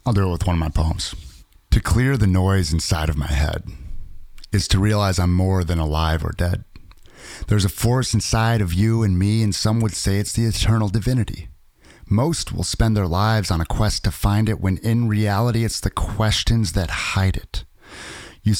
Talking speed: 200 wpm